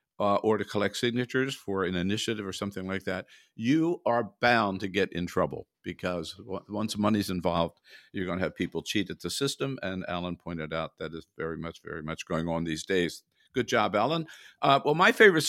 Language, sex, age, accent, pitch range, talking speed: English, male, 50-69, American, 95-125 Hz, 210 wpm